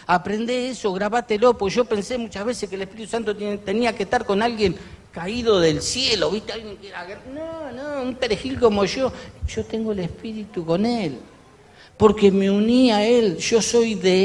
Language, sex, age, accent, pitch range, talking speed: Spanish, male, 50-69, Argentinian, 160-230 Hz, 175 wpm